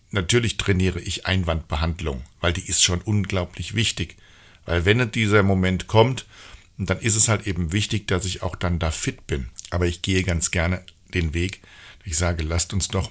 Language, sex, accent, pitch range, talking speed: German, male, German, 90-110 Hz, 185 wpm